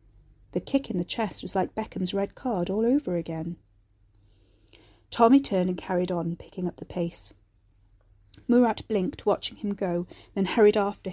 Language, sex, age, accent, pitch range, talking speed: English, female, 40-59, British, 150-205 Hz, 160 wpm